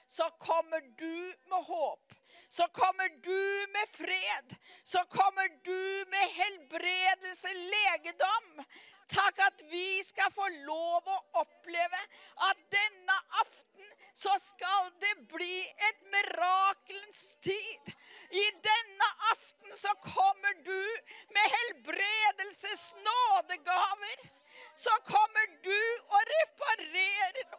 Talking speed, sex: 105 wpm, female